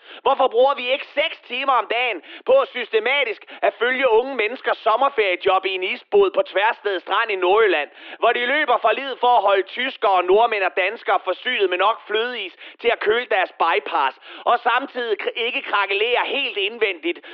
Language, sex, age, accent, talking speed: Danish, male, 30-49, native, 170 wpm